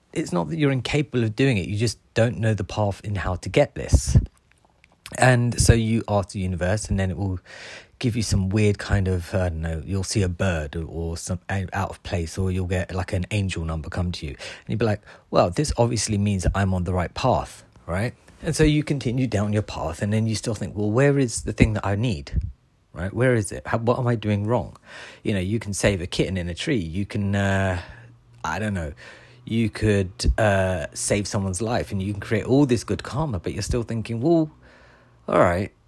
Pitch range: 95-120 Hz